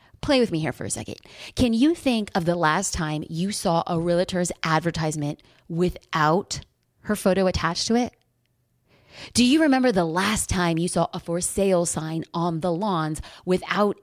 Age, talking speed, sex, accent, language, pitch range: 30-49, 175 wpm, female, American, English, 175-250 Hz